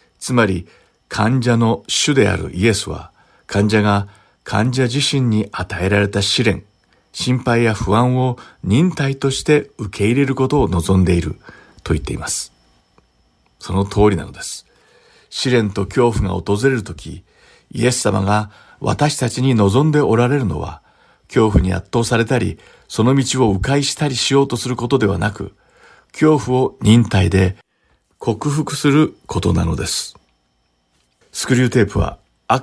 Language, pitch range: Japanese, 100-125 Hz